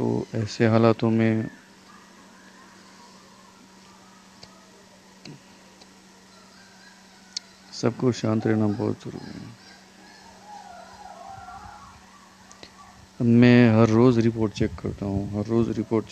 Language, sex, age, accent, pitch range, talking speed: Hindi, male, 50-69, native, 105-115 Hz, 75 wpm